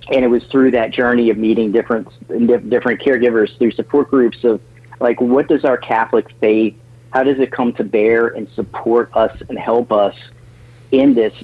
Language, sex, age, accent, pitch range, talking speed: English, male, 40-59, American, 110-125 Hz, 185 wpm